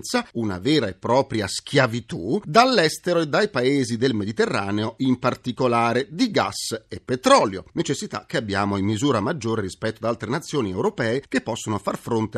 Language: Italian